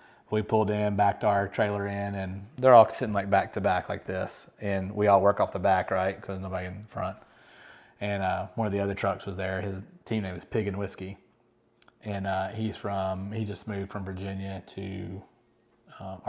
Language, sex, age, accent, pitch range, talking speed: English, male, 30-49, American, 100-125 Hz, 210 wpm